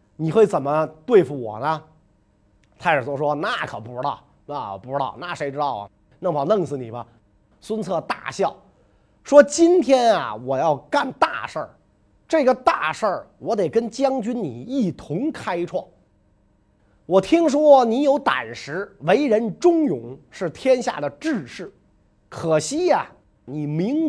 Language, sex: Chinese, male